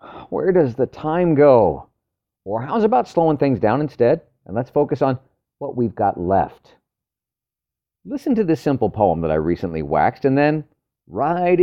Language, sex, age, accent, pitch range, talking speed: English, male, 50-69, American, 100-145 Hz, 165 wpm